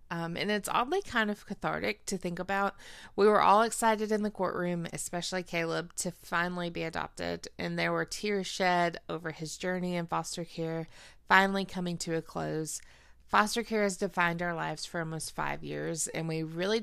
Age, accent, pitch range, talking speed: 20-39, American, 160-190 Hz, 185 wpm